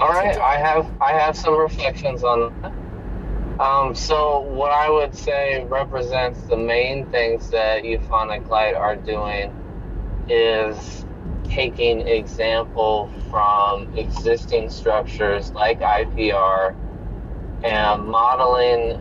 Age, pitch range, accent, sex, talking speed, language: 20-39, 100-125 Hz, American, male, 110 wpm, English